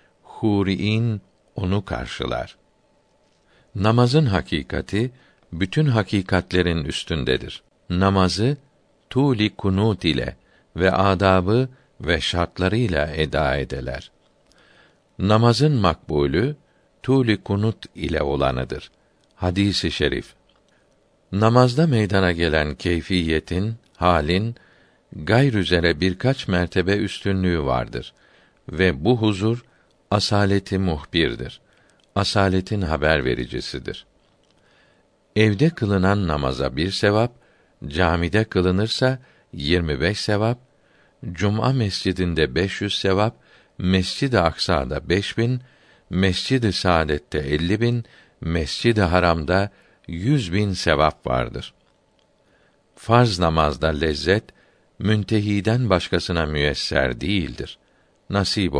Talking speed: 80 wpm